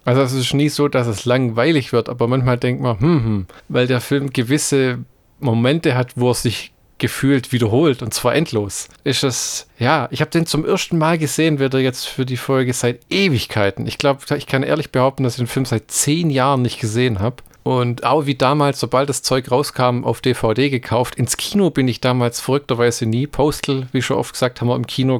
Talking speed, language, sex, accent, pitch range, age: 215 wpm, German, male, German, 120-140 Hz, 40-59